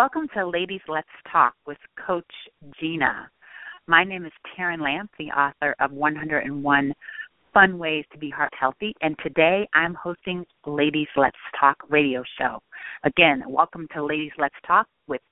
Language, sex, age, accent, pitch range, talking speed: English, female, 40-59, American, 150-190 Hz, 155 wpm